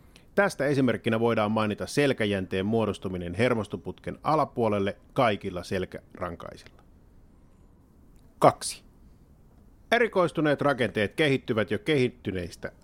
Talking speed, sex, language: 75 wpm, male, Finnish